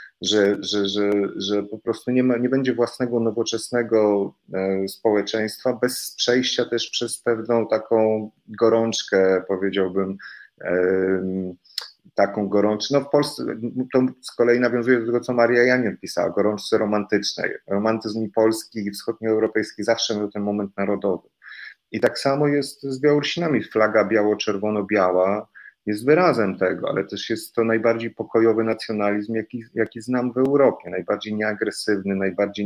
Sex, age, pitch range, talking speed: male, 30-49, 100-125 Hz, 140 wpm